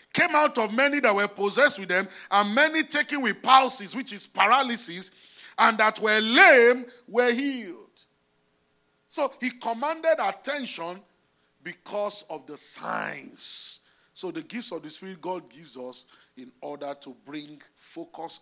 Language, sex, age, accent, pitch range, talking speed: English, male, 40-59, Nigerian, 150-245 Hz, 145 wpm